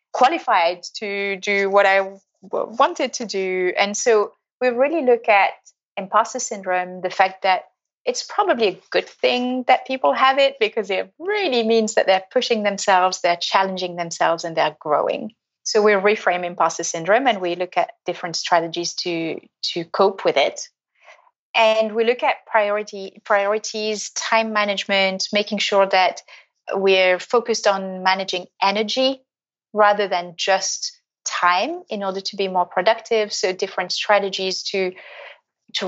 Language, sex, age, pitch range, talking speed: English, female, 30-49, 190-235 Hz, 150 wpm